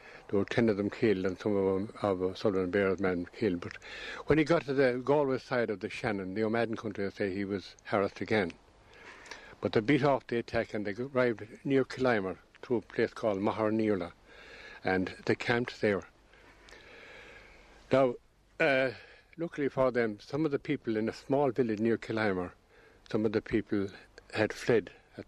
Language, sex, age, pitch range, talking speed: English, male, 60-79, 100-125 Hz, 190 wpm